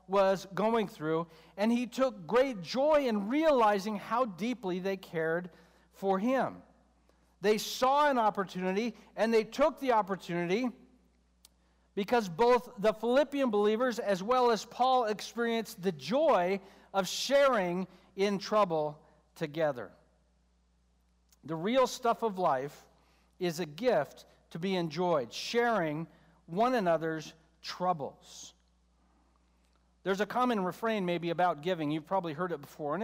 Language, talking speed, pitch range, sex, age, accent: English, 125 wpm, 160-230 Hz, male, 60-79, American